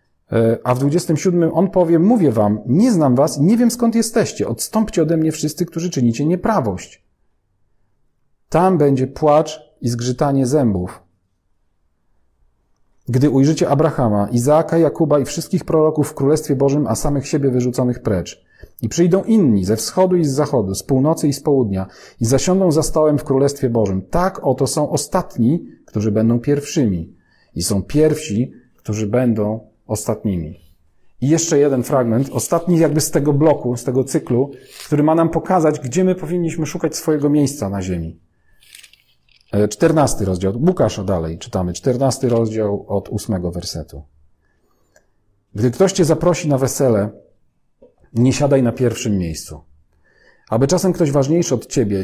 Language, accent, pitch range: Polish, native, 105-155 Hz